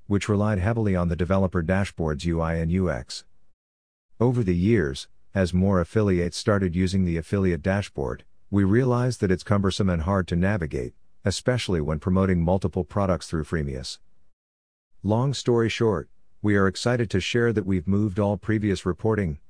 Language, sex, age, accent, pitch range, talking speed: English, male, 50-69, American, 85-100 Hz, 155 wpm